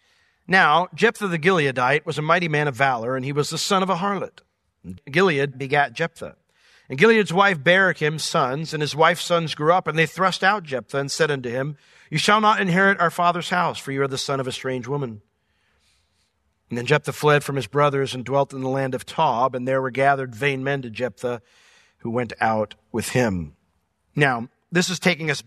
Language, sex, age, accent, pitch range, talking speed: English, male, 50-69, American, 135-175 Hz, 210 wpm